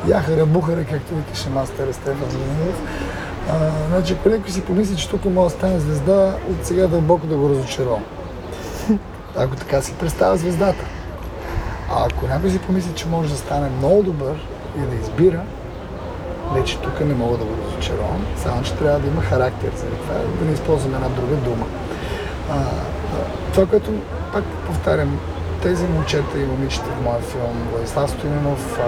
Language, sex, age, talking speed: Bulgarian, male, 30-49, 160 wpm